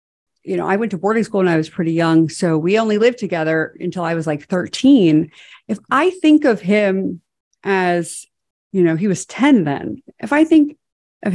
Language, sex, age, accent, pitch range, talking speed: English, female, 50-69, American, 170-220 Hz, 200 wpm